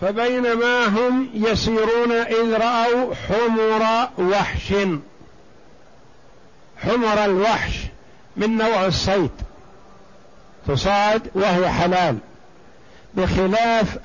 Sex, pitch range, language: male, 190-225 Hz, Arabic